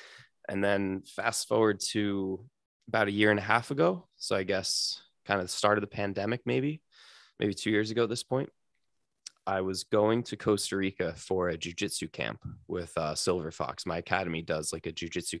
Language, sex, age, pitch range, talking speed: English, male, 20-39, 85-100 Hz, 195 wpm